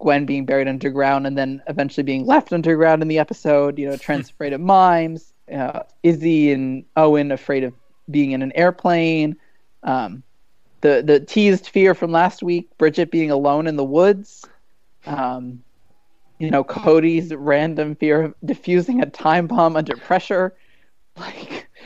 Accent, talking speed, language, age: American, 155 wpm, English, 20-39